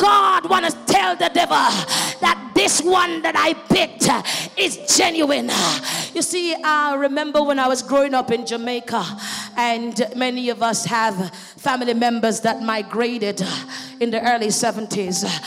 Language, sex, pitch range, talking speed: English, female, 225-275 Hz, 145 wpm